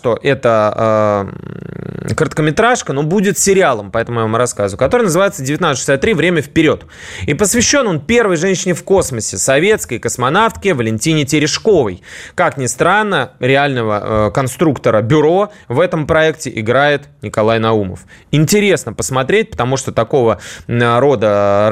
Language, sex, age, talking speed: Russian, male, 20-39, 135 wpm